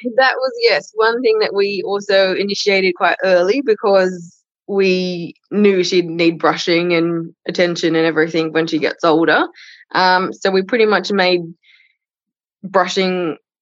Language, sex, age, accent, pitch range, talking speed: English, female, 20-39, Australian, 175-205 Hz, 140 wpm